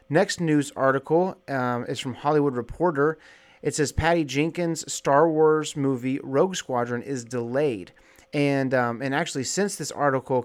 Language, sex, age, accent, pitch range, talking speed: English, male, 30-49, American, 125-145 Hz, 150 wpm